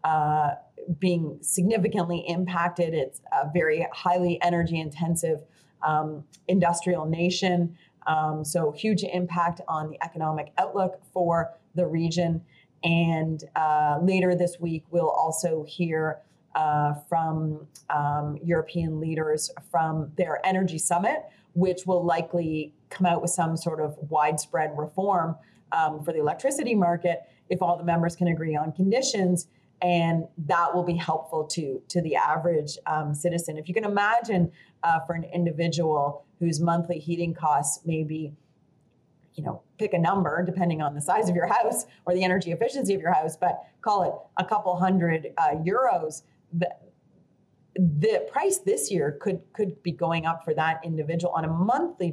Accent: American